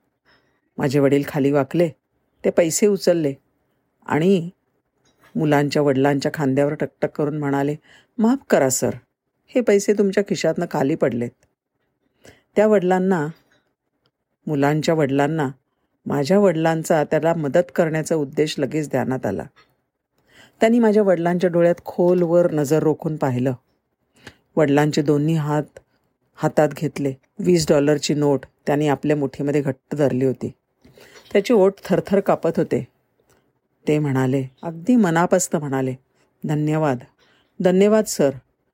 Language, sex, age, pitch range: Marathi, female, 50-69, 140-180 Hz